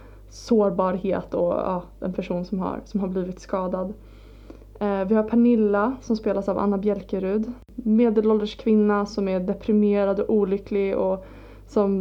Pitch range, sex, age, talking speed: 195-220 Hz, female, 20-39, 145 wpm